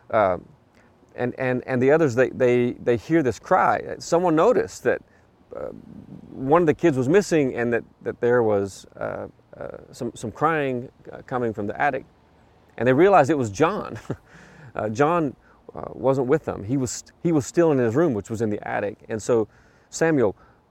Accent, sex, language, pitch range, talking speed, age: American, male, English, 120-160 Hz, 190 wpm, 30-49